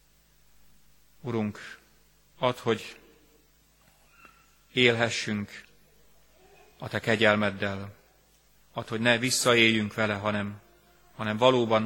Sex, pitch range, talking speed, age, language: male, 100-115 Hz, 75 wpm, 30-49, Hungarian